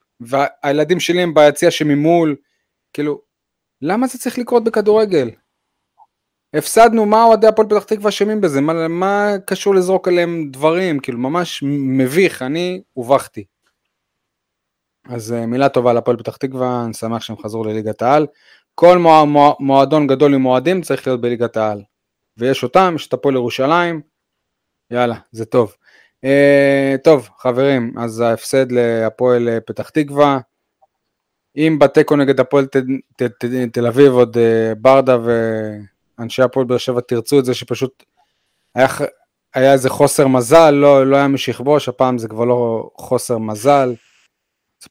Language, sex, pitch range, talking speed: Hebrew, male, 125-155 Hz, 140 wpm